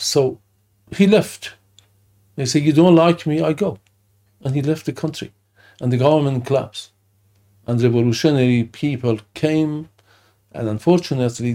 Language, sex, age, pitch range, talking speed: English, male, 50-69, 100-135 Hz, 135 wpm